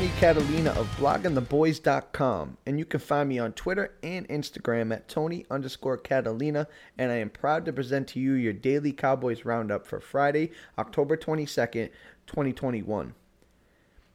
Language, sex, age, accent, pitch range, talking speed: English, male, 20-39, American, 125-160 Hz, 145 wpm